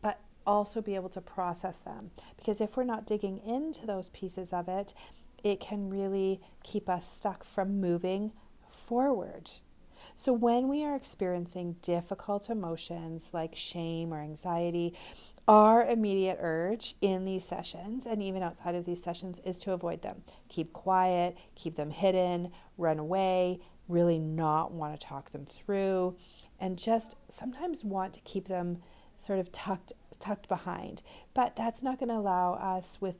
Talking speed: 155 wpm